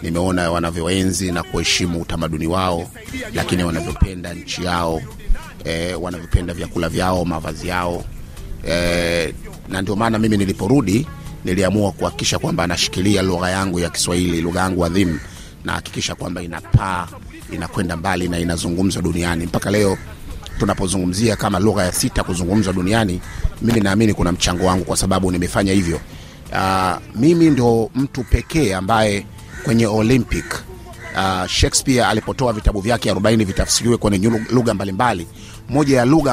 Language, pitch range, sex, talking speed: Swahili, 90-115 Hz, male, 135 wpm